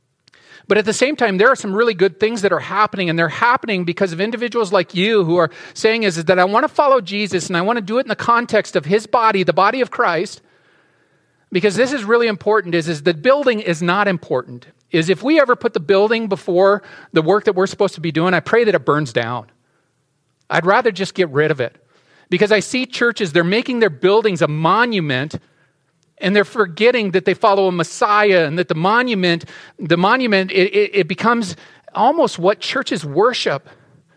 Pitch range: 170-225 Hz